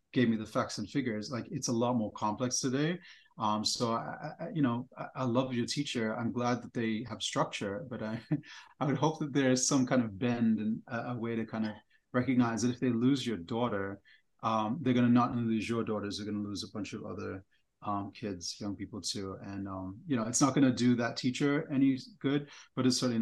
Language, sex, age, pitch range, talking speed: English, male, 30-49, 110-135 Hz, 245 wpm